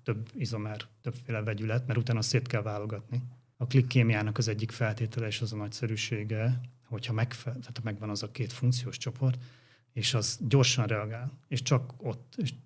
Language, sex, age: Hungarian, male, 30-49